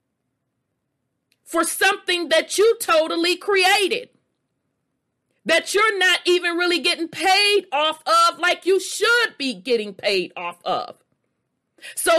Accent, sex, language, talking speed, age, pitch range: American, female, English, 120 wpm, 40-59, 230-340 Hz